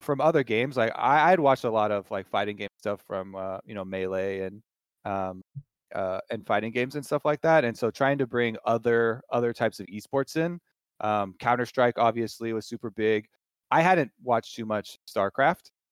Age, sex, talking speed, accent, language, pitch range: 30-49, male, 200 wpm, American, English, 100-125 Hz